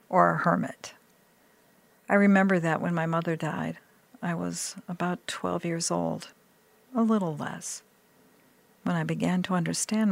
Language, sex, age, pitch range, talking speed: English, female, 50-69, 165-205 Hz, 140 wpm